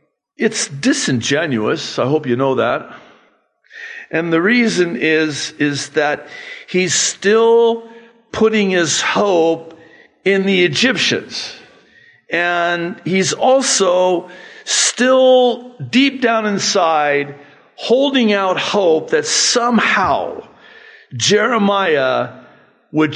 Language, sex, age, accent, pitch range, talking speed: English, male, 50-69, American, 170-230 Hz, 90 wpm